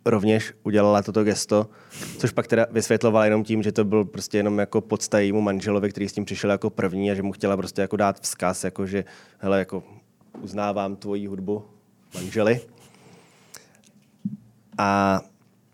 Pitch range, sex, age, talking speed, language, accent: 105-130 Hz, male, 20-39, 155 wpm, Czech, native